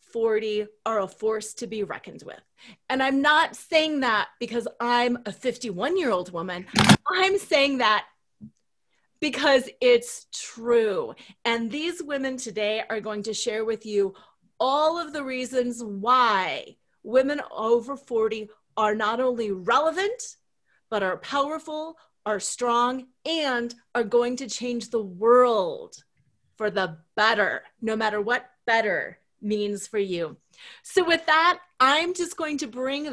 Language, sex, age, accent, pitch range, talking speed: English, female, 30-49, American, 220-310 Hz, 140 wpm